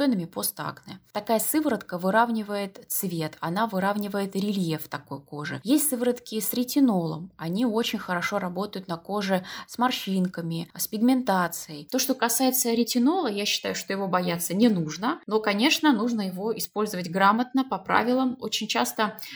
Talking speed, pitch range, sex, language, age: 140 wpm, 180-230 Hz, female, Russian, 20-39